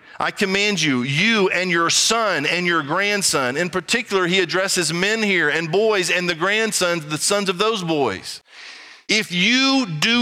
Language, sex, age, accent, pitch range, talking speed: English, male, 40-59, American, 170-210 Hz, 170 wpm